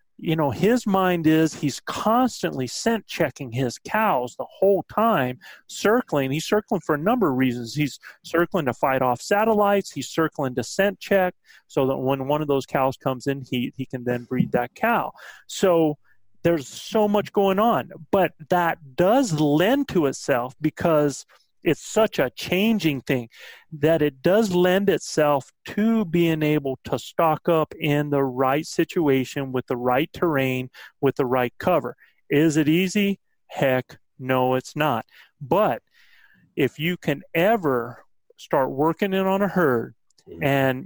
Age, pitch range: 40-59, 135-185 Hz